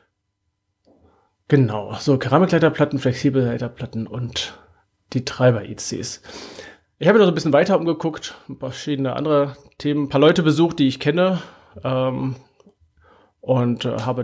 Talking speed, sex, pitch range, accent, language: 120 wpm, male, 125-160 Hz, German, German